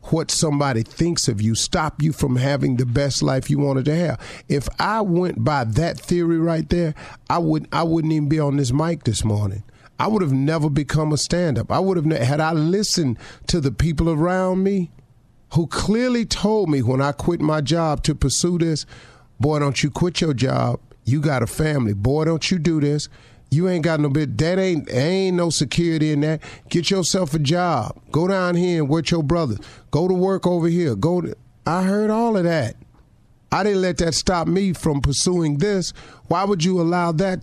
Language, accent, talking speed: English, American, 205 wpm